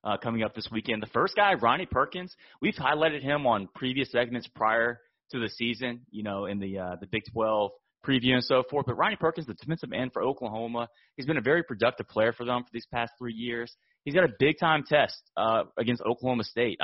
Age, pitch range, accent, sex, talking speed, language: 30-49, 110-130 Hz, American, male, 220 wpm, English